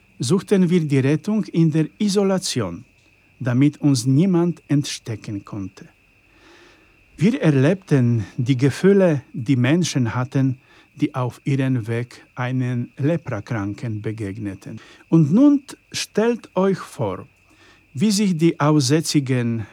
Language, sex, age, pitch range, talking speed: Polish, male, 50-69, 115-155 Hz, 105 wpm